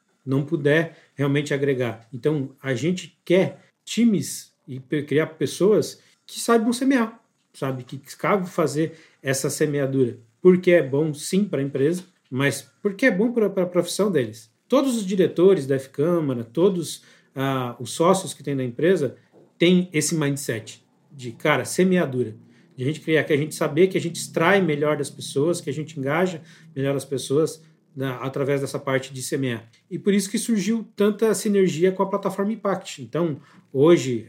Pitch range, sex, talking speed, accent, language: 130-175 Hz, male, 170 wpm, Brazilian, Portuguese